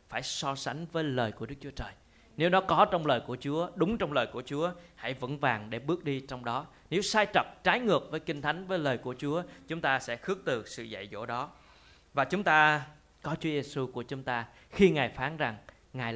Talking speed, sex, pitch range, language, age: 240 wpm, male, 125-165 Hz, Vietnamese, 20-39